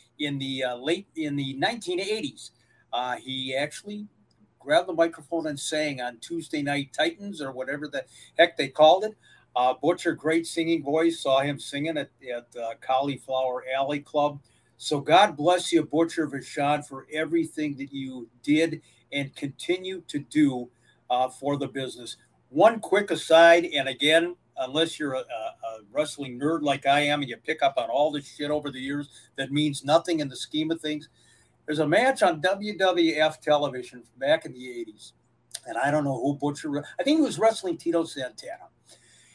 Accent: American